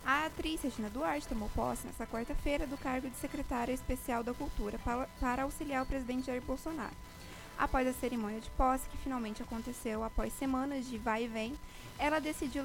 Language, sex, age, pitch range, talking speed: Portuguese, female, 20-39, 245-290 Hz, 175 wpm